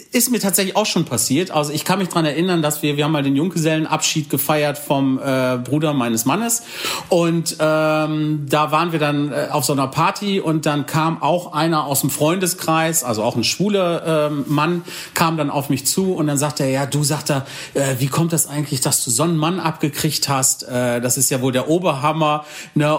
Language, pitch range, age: German, 140-165 Hz, 40-59